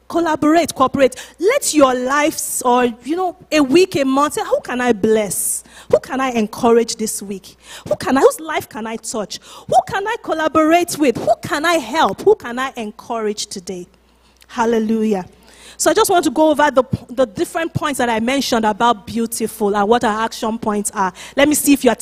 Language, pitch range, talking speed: English, 225-310 Hz, 195 wpm